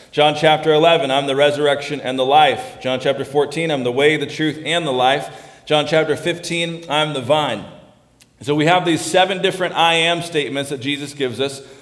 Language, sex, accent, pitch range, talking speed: English, male, American, 130-155 Hz, 200 wpm